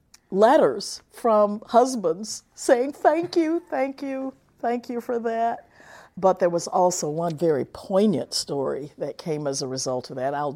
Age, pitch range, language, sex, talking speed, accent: 50-69, 140-170 Hz, English, female, 160 wpm, American